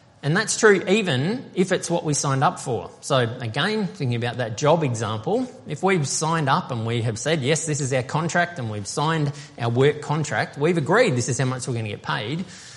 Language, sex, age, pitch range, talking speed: English, male, 20-39, 125-165 Hz, 225 wpm